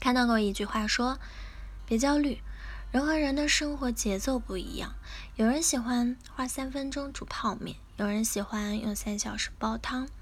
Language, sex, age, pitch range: Chinese, female, 10-29, 205-255 Hz